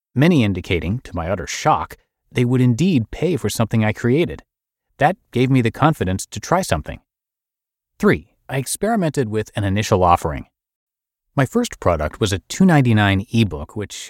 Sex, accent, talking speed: male, American, 160 wpm